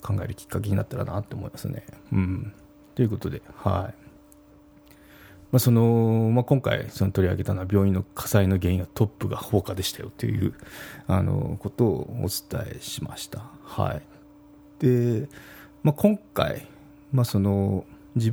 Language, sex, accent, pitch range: Japanese, male, native, 100-145 Hz